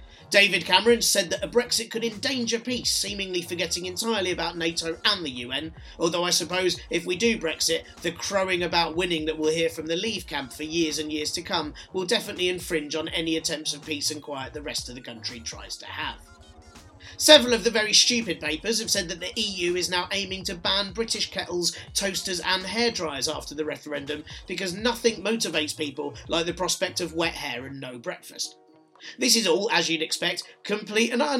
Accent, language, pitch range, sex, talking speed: British, English, 165-230 Hz, male, 205 wpm